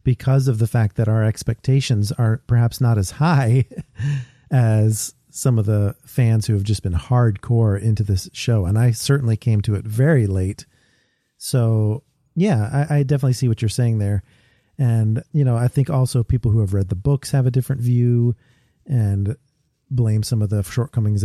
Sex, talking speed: male, 185 wpm